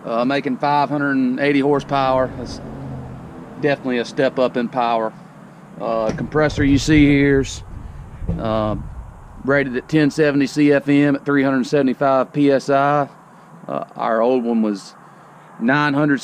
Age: 40-59